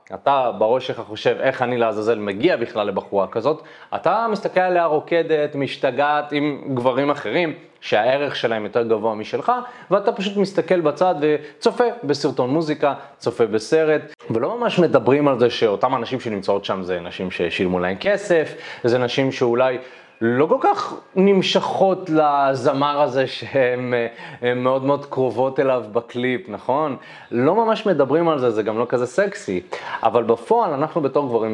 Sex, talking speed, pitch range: male, 150 wpm, 110-155 Hz